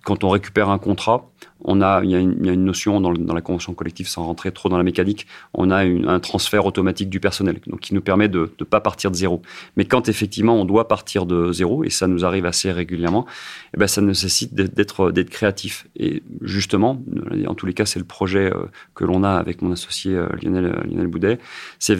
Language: French